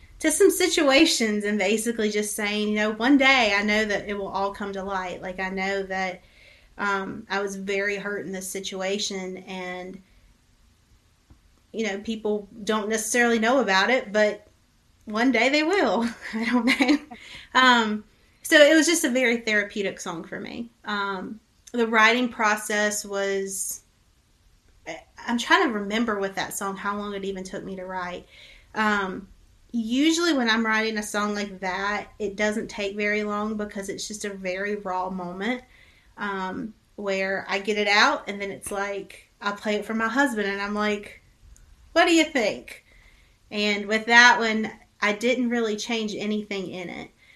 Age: 30-49